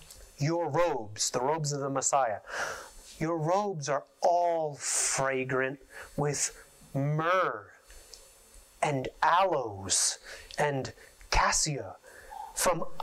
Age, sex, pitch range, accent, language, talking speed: 30-49, male, 150-190 Hz, American, English, 90 wpm